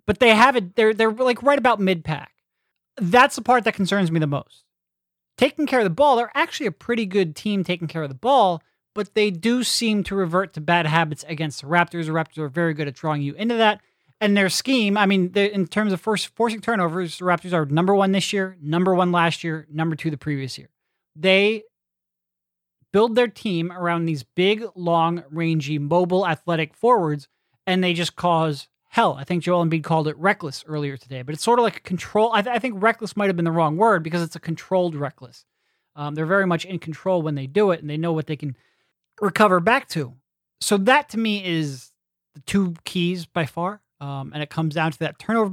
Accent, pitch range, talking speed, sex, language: American, 155-210 Hz, 225 wpm, male, English